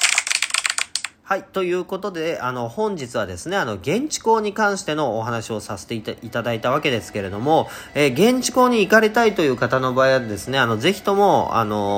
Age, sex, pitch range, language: 40-59, male, 115-185 Hz, Japanese